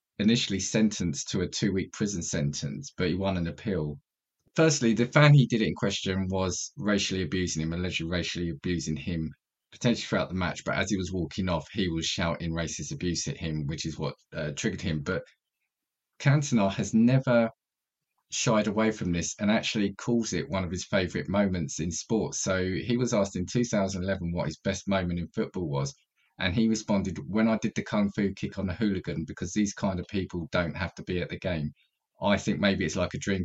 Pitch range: 90-115 Hz